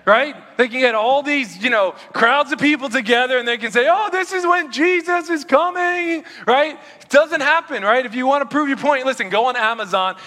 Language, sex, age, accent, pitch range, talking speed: English, male, 20-39, American, 210-285 Hz, 230 wpm